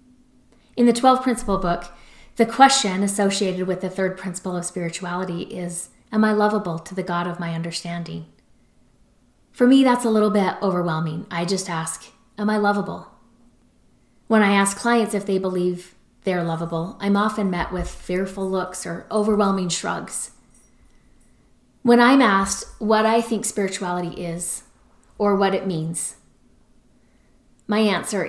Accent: American